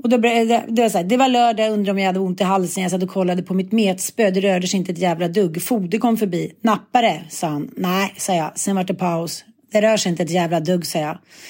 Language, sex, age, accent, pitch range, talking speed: Swedish, female, 30-49, native, 190-245 Hz, 275 wpm